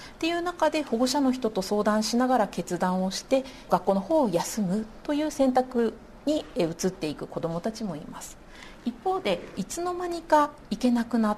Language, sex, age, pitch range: Japanese, female, 50-69, 195-280 Hz